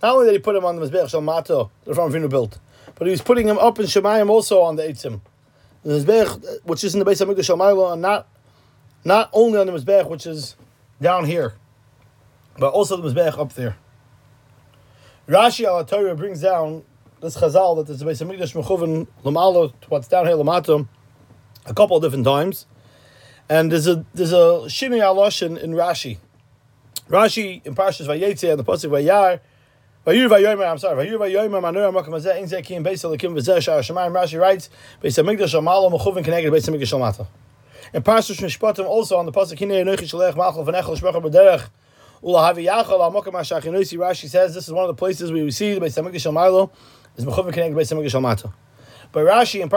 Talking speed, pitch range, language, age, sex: 125 wpm, 135-190 Hz, English, 30-49, male